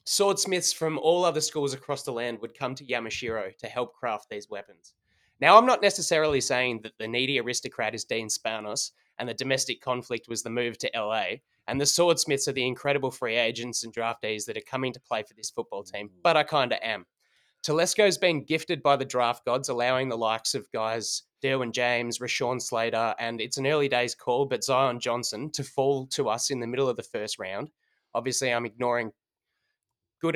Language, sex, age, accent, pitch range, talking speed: English, male, 20-39, Australian, 120-150 Hz, 200 wpm